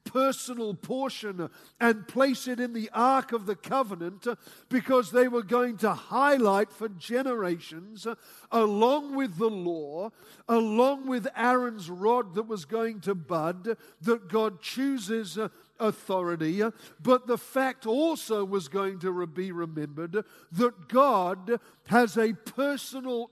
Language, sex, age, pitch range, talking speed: English, male, 50-69, 170-230 Hz, 130 wpm